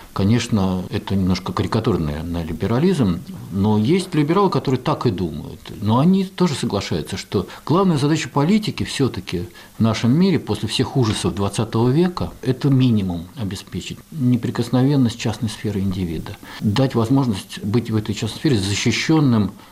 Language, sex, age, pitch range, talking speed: Russian, male, 50-69, 90-120 Hz, 135 wpm